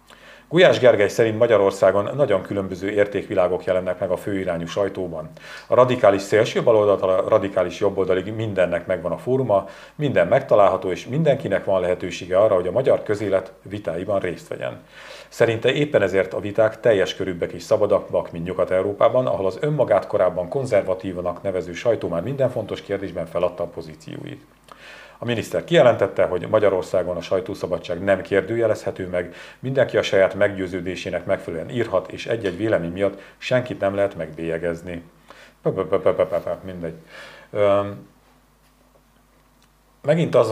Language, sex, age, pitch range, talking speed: Hungarian, male, 40-59, 90-105 Hz, 135 wpm